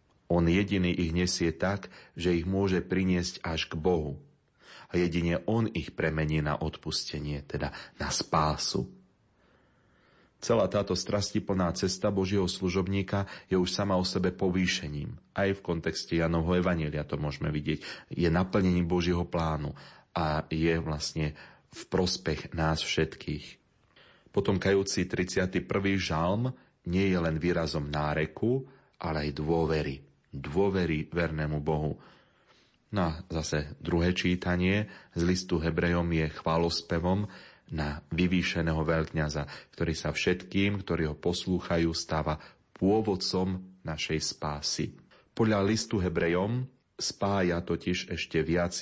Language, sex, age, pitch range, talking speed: Slovak, male, 30-49, 80-95 Hz, 120 wpm